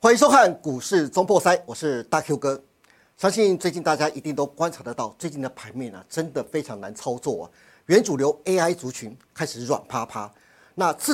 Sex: male